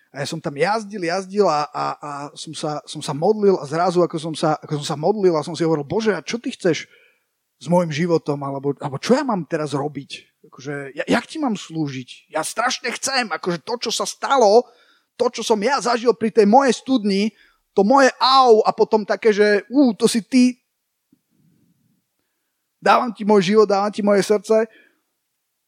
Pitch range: 165-220 Hz